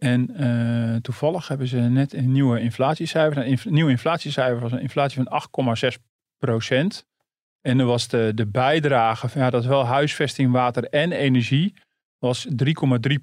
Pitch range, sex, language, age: 115-135 Hz, male, Dutch, 40-59